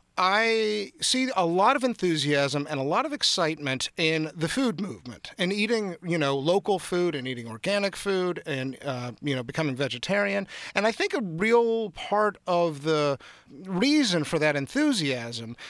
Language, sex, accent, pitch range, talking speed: English, male, American, 140-195 Hz, 165 wpm